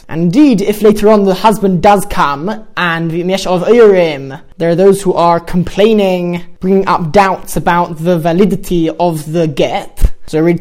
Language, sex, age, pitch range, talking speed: English, male, 20-39, 175-210 Hz, 170 wpm